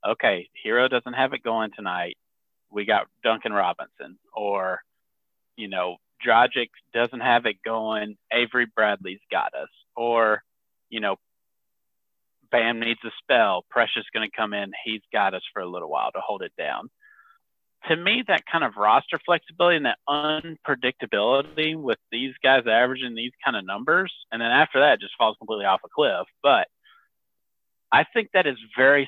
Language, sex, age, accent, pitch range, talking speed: English, male, 40-59, American, 110-155 Hz, 165 wpm